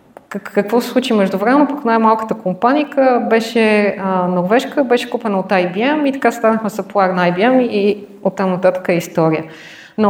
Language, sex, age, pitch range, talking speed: Bulgarian, female, 30-49, 175-225 Hz, 155 wpm